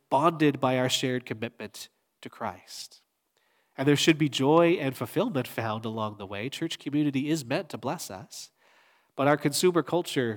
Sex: male